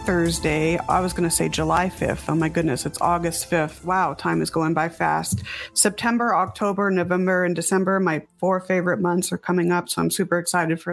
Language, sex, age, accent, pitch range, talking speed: English, female, 40-59, American, 170-200 Hz, 200 wpm